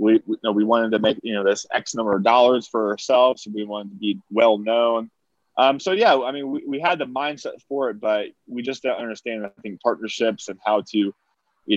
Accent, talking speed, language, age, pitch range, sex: American, 245 wpm, English, 20-39, 105-125 Hz, male